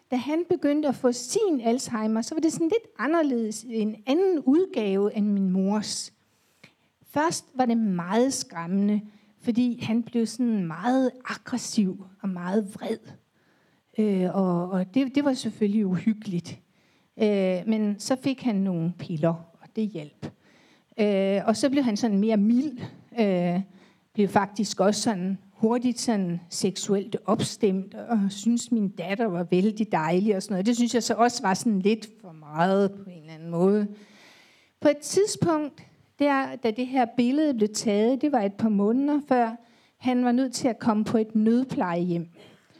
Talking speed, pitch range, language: 165 wpm, 195-260 Hz, Danish